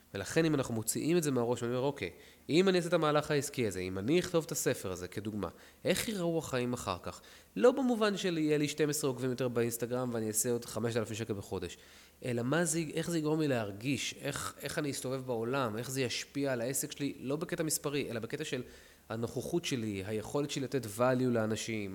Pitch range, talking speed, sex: 110-150 Hz, 200 wpm, male